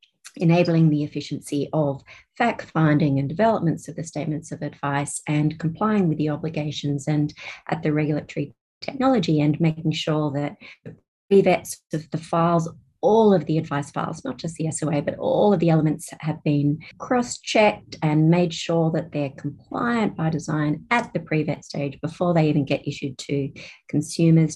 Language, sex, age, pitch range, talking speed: English, female, 40-59, 150-175 Hz, 165 wpm